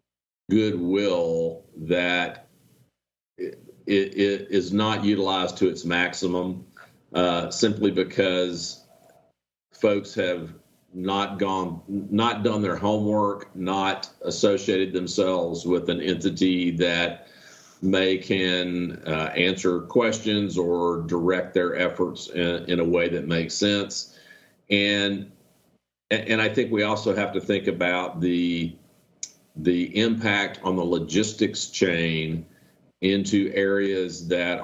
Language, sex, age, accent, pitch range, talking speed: English, male, 50-69, American, 85-100 Hz, 115 wpm